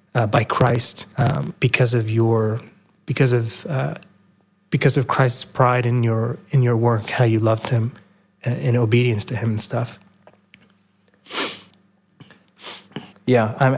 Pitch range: 115-140 Hz